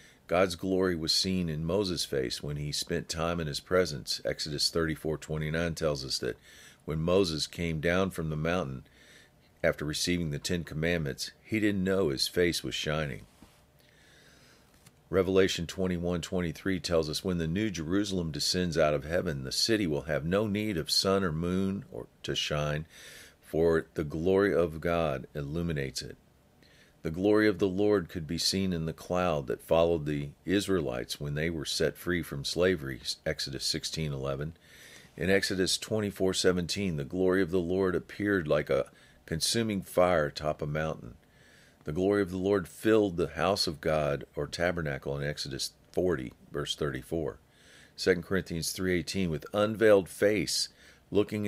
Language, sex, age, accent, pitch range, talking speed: English, male, 50-69, American, 80-95 Hz, 155 wpm